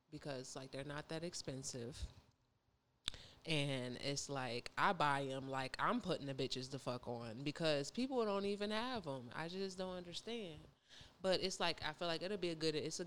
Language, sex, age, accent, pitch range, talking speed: English, female, 20-39, American, 140-175 Hz, 195 wpm